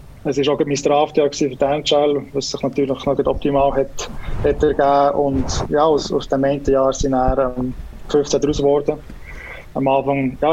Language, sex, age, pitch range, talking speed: German, male, 20-39, 135-145 Hz, 195 wpm